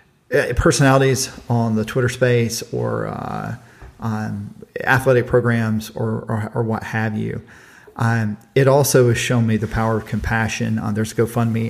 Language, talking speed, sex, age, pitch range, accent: English, 150 wpm, male, 40-59, 110-125 Hz, American